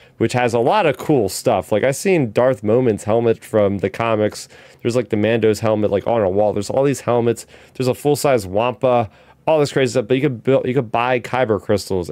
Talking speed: 235 wpm